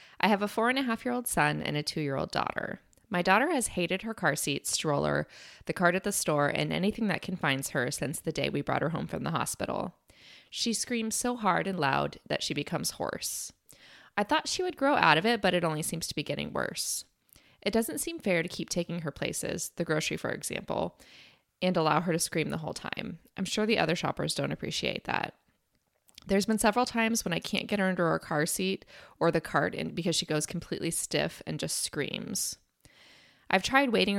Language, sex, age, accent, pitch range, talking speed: English, female, 20-39, American, 160-215 Hz, 210 wpm